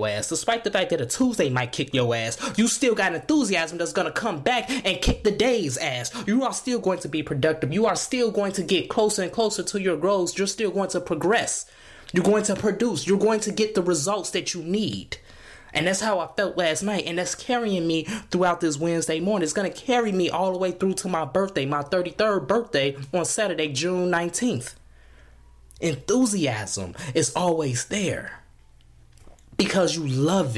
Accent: American